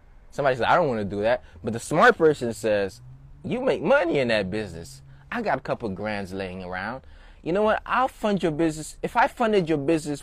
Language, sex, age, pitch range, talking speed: English, male, 20-39, 110-175 Hz, 230 wpm